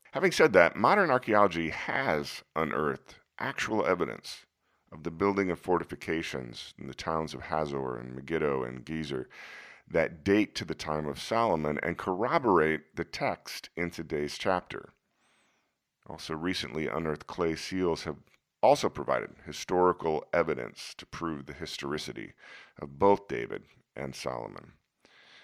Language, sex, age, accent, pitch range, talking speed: English, male, 50-69, American, 75-100 Hz, 130 wpm